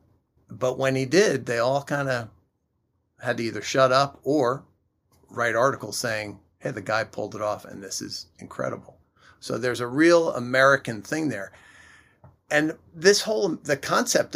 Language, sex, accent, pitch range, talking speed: English, male, American, 105-140 Hz, 165 wpm